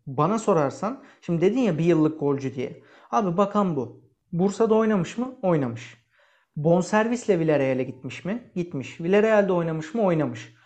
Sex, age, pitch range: male, 40-59, 155-210 Hz